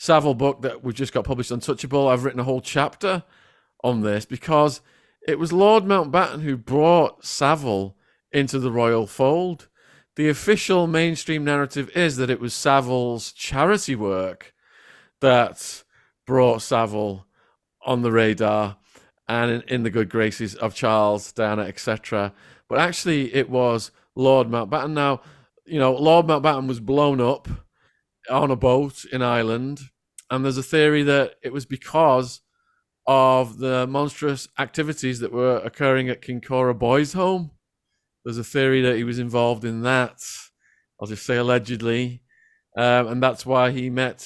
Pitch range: 120-150 Hz